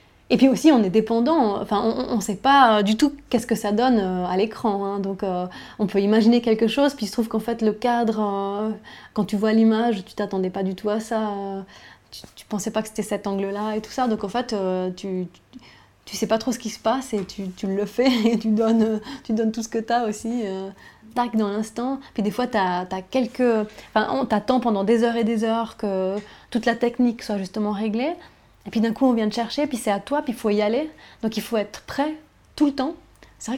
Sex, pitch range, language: female, 205-240 Hz, French